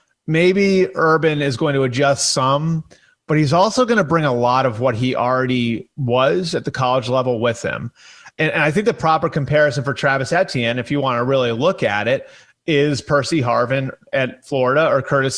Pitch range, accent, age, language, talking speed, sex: 125-155 Hz, American, 30-49, English, 200 wpm, male